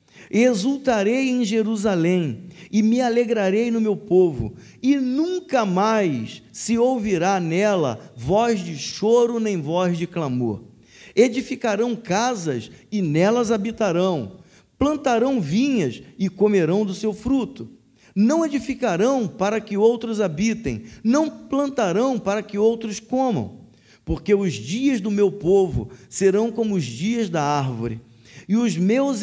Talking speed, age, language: 125 wpm, 50-69, Portuguese